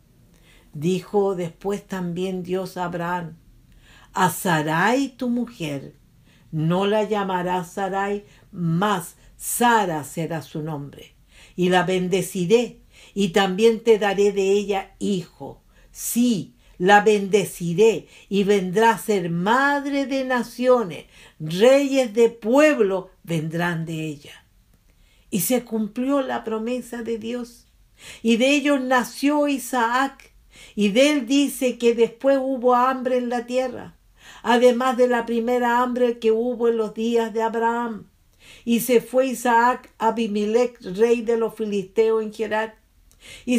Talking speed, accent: 130 wpm, American